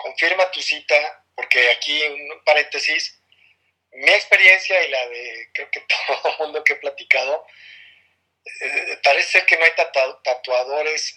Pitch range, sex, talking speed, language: 135-180 Hz, male, 135 wpm, Spanish